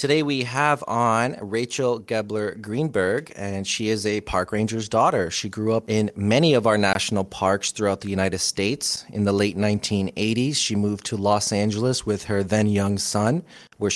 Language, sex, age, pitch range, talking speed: English, male, 30-49, 100-115 Hz, 175 wpm